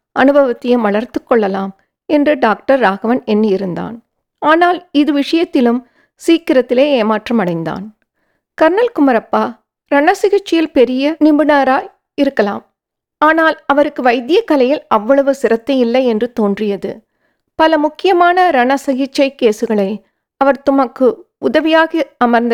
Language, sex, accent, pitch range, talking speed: English, female, Indian, 230-300 Hz, 90 wpm